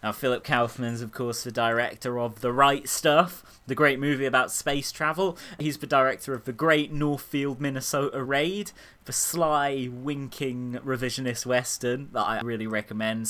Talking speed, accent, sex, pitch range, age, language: 160 wpm, British, male, 100-140 Hz, 20-39, English